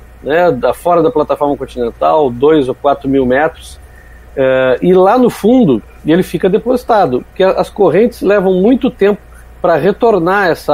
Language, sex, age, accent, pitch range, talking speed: Portuguese, male, 50-69, Brazilian, 125-185 Hz, 155 wpm